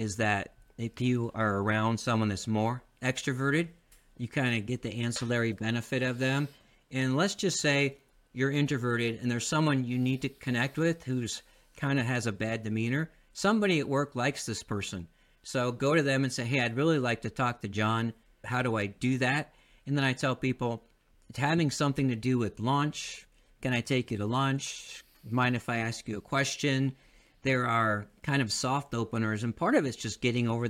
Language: English